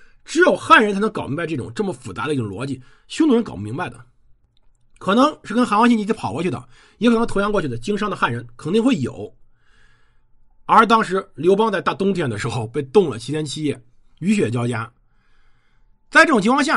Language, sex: Chinese, male